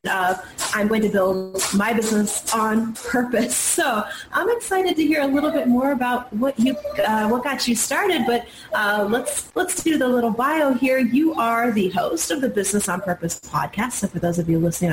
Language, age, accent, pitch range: English, 30-49, American, 185-240 Hz